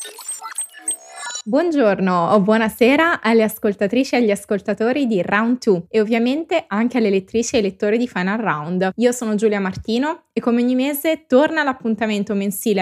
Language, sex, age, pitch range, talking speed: Italian, female, 20-39, 195-245 Hz, 150 wpm